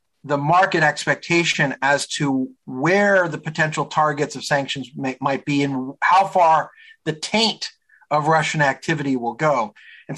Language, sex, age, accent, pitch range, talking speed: English, male, 50-69, American, 145-185 Hz, 140 wpm